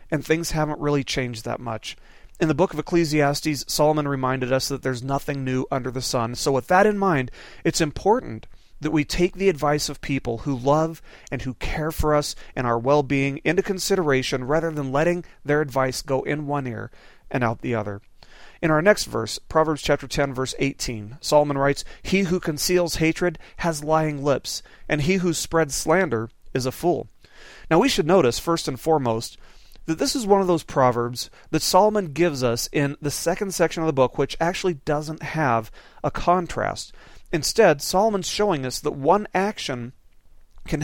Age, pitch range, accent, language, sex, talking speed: 40-59, 135-175 Hz, American, English, male, 185 wpm